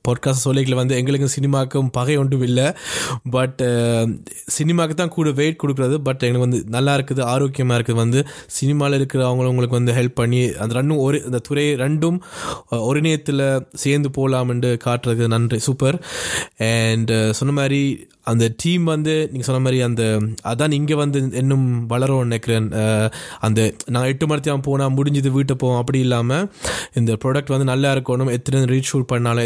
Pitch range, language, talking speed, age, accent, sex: 120-140 Hz, Tamil, 155 wpm, 20-39, native, male